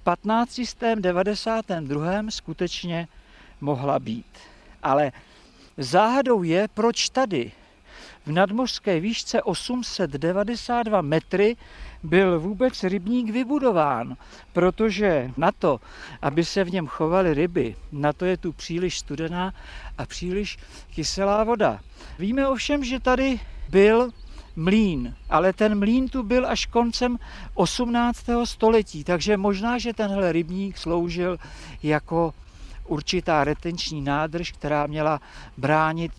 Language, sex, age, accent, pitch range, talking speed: Czech, male, 50-69, native, 150-215 Hz, 105 wpm